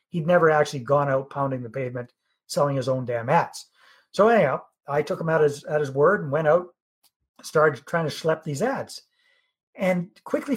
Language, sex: English, male